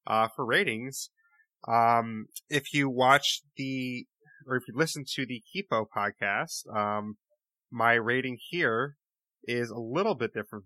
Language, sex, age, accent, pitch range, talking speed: English, male, 30-49, American, 120-155 Hz, 140 wpm